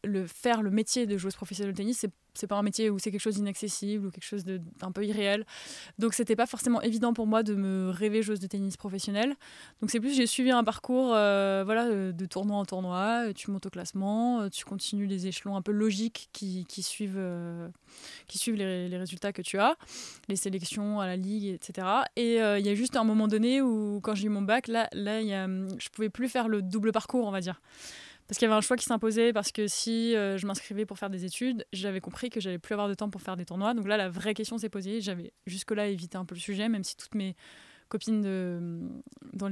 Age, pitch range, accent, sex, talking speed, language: 20-39, 195-225 Hz, French, female, 245 wpm, French